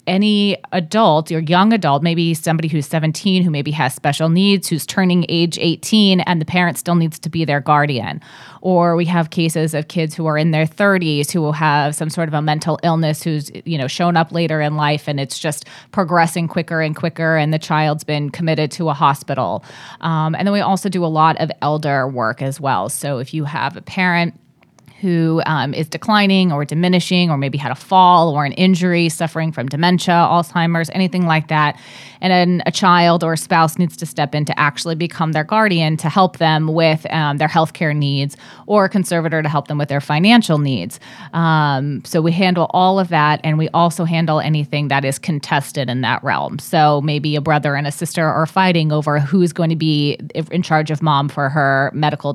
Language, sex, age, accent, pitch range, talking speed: English, female, 30-49, American, 150-170 Hz, 210 wpm